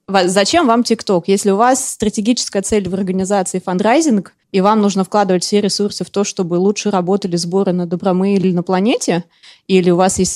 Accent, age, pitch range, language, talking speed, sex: native, 20-39, 185-210 Hz, Russian, 185 wpm, female